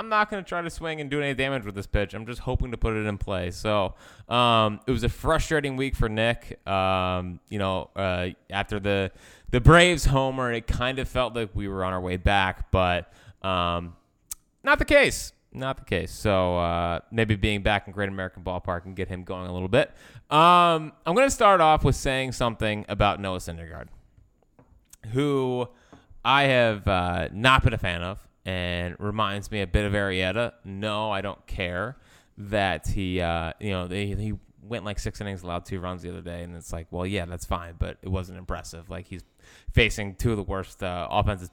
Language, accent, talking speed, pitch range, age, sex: English, American, 205 wpm, 95-120 Hz, 20-39, male